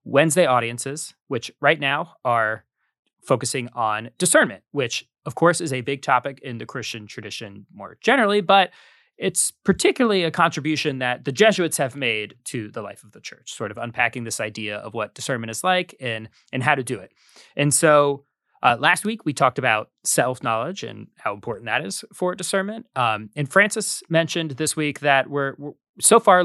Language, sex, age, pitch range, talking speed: English, male, 30-49, 120-155 Hz, 185 wpm